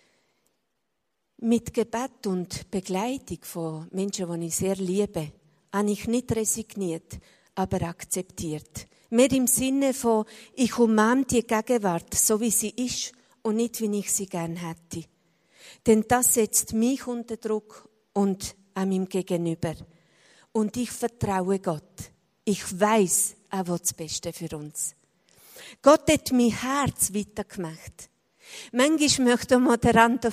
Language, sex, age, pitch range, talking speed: Italian, female, 50-69, 190-240 Hz, 135 wpm